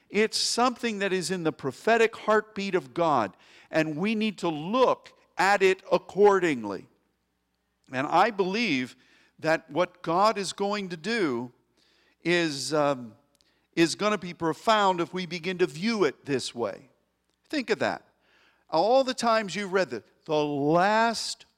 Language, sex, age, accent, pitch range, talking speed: English, male, 50-69, American, 155-210 Hz, 145 wpm